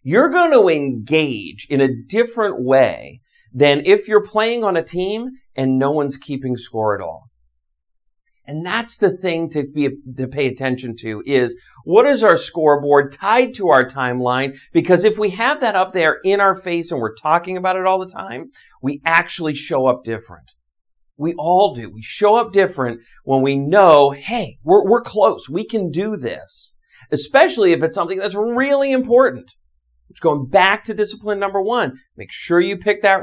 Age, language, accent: 40-59, English, American